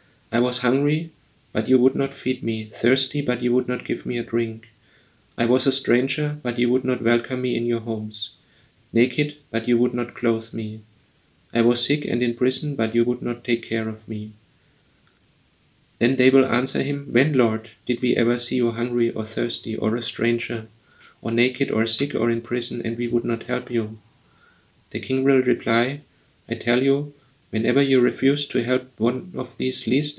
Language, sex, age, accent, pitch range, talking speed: English, male, 40-59, German, 115-130 Hz, 195 wpm